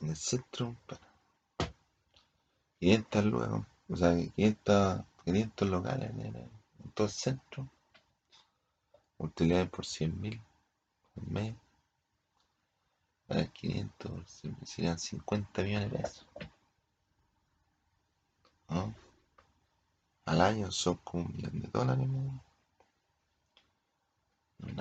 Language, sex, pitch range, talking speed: Spanish, male, 85-105 Hz, 95 wpm